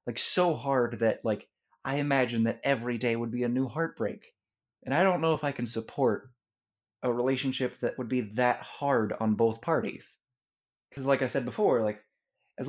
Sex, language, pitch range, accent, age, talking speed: male, English, 115-150 Hz, American, 20-39, 190 wpm